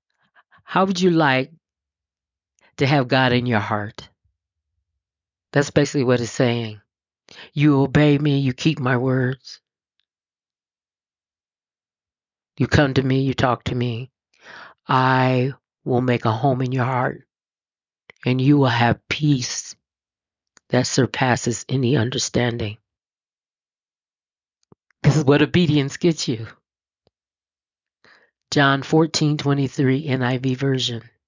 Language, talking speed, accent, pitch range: English, 115 wpm, American, 120-160 Hz